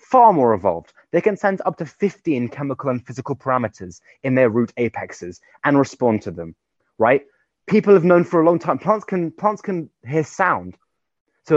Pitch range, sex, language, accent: 120-160 Hz, male, English, British